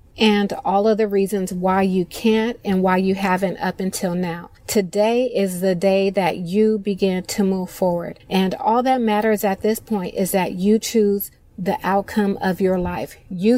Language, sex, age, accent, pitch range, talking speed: English, female, 30-49, American, 190-210 Hz, 185 wpm